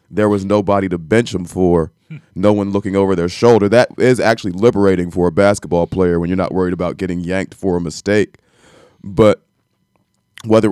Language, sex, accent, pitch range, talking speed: English, male, American, 95-115 Hz, 185 wpm